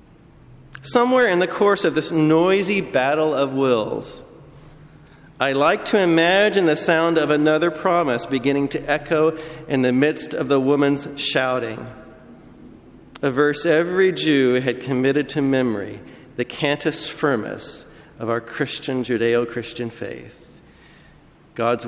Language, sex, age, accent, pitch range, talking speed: English, male, 40-59, American, 130-160 Hz, 125 wpm